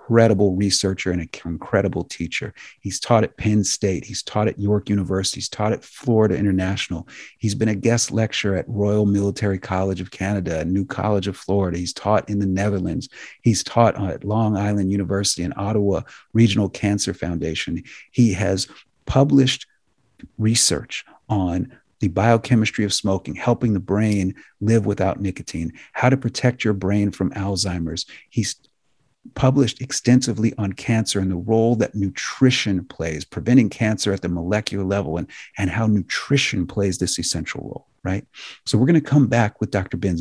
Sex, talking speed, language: male, 165 wpm, English